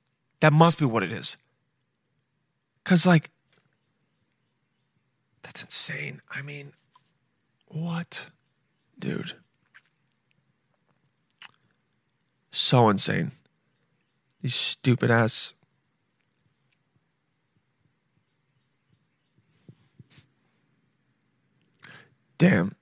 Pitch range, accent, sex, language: 130-155 Hz, American, male, English